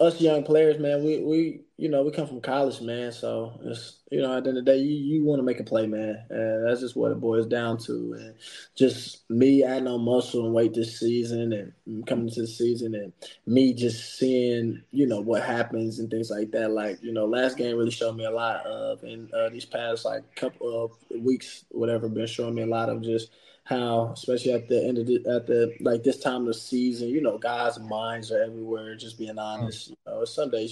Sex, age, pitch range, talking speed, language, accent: male, 20-39, 115-130 Hz, 240 wpm, English, American